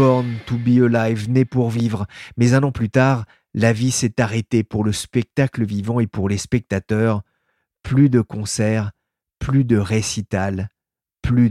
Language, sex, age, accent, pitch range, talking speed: French, male, 40-59, French, 110-125 Hz, 160 wpm